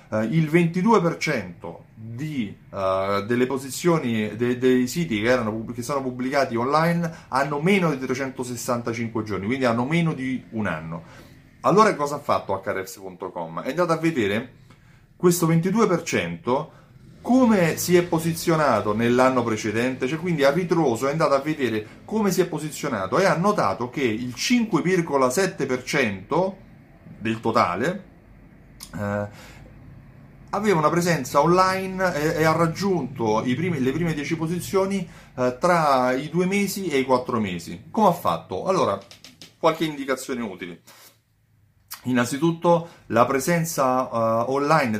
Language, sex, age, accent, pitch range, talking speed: Italian, male, 30-49, native, 120-165 Hz, 135 wpm